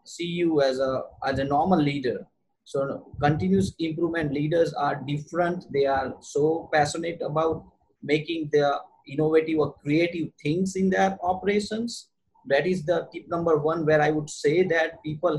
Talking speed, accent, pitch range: 160 wpm, Indian, 145-175 Hz